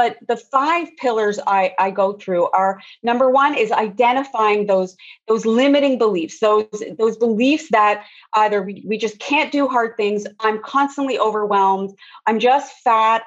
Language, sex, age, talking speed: English, female, 30-49, 160 wpm